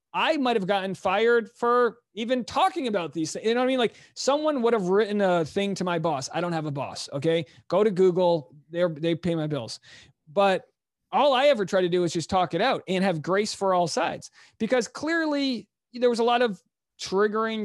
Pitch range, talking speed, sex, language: 175-230 Hz, 220 wpm, male, English